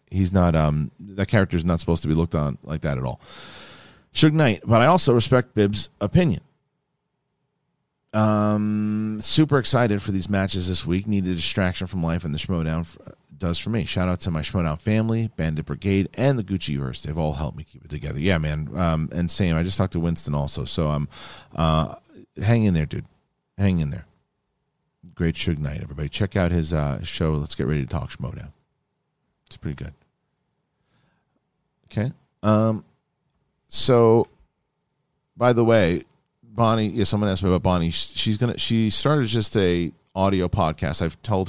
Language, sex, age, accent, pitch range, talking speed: English, male, 40-59, American, 80-110 Hz, 180 wpm